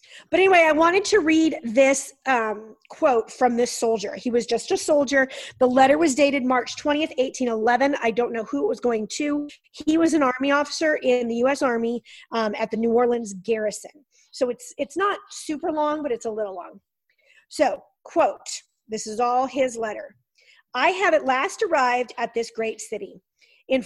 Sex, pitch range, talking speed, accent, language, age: female, 230-300 Hz, 190 wpm, American, English, 40-59